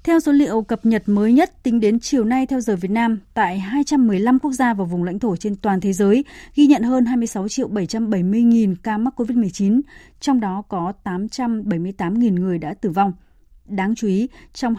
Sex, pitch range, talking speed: female, 195-245 Hz, 185 wpm